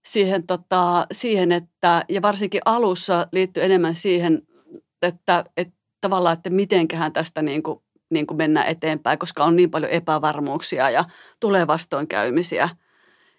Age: 30-49